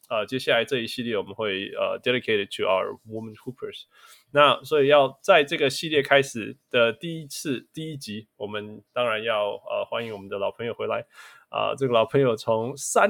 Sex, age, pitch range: male, 20-39, 105-140 Hz